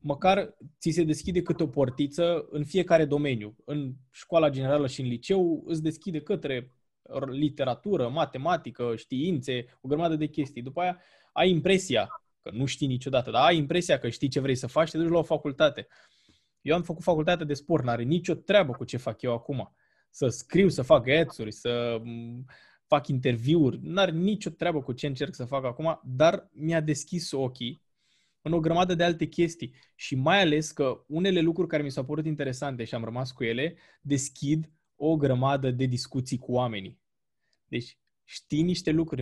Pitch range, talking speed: 130-165 Hz, 180 wpm